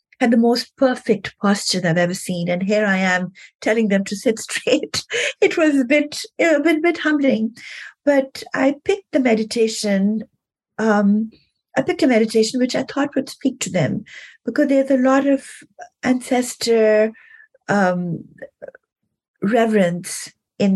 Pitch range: 185-225 Hz